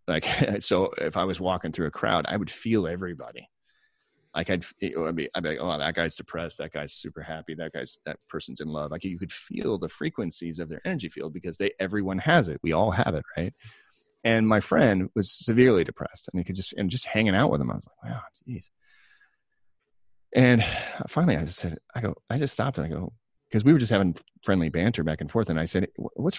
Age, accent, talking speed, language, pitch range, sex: 30-49, American, 230 wpm, English, 85-120 Hz, male